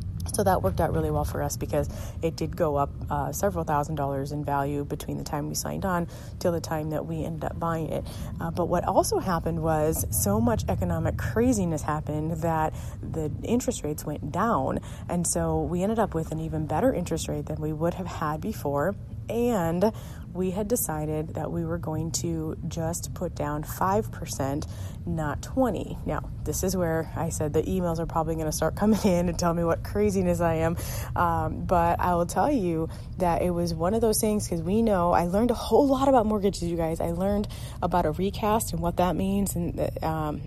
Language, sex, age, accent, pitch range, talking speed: English, female, 30-49, American, 155-185 Hz, 210 wpm